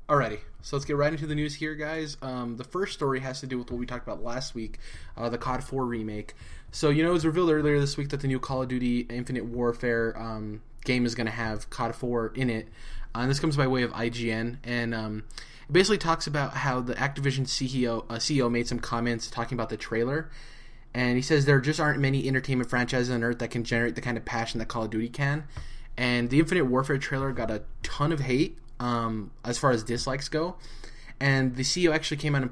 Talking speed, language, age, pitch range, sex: 240 wpm, English, 20-39, 115-135 Hz, male